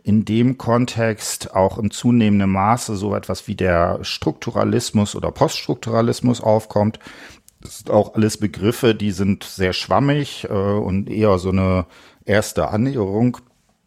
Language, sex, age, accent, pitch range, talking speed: German, male, 40-59, German, 95-115 Hz, 135 wpm